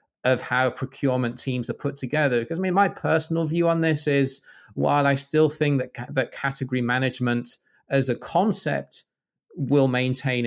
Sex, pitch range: male, 125-145 Hz